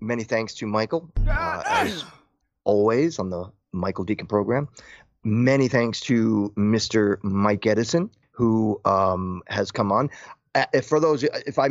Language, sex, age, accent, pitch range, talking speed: English, male, 30-49, American, 105-135 Hz, 145 wpm